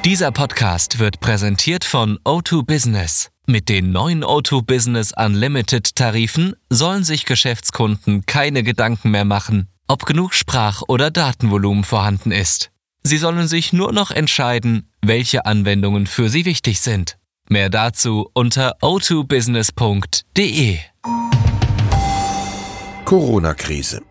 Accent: German